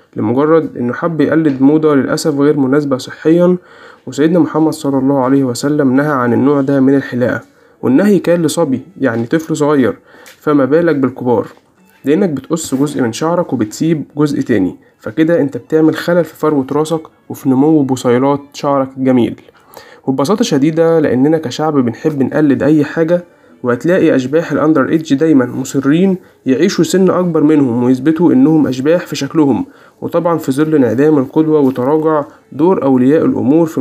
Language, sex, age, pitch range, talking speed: Arabic, male, 20-39, 135-165 Hz, 145 wpm